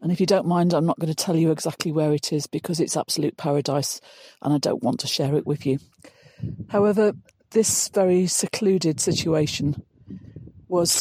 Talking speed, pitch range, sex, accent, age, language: 185 wpm, 150-180 Hz, female, British, 50-69, English